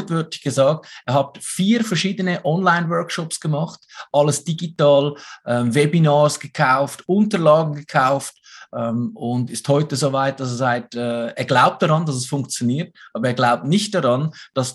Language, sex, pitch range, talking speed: German, male, 125-165 Hz, 150 wpm